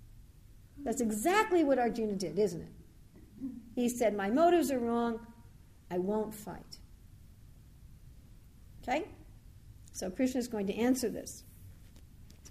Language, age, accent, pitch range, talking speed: English, 50-69, American, 200-255 Hz, 120 wpm